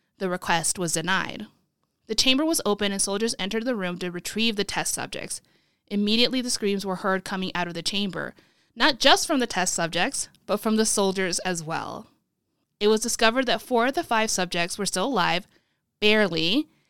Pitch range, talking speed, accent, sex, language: 185-230 Hz, 190 wpm, American, female, English